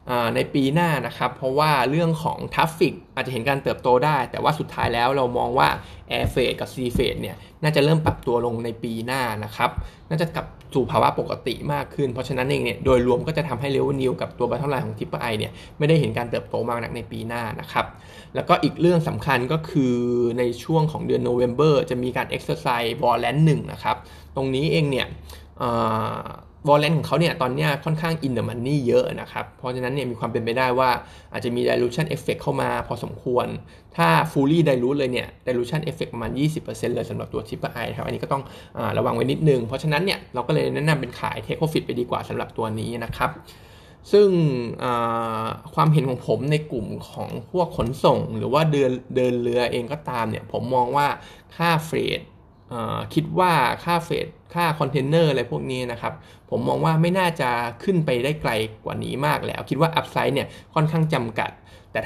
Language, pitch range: Thai, 120-155 Hz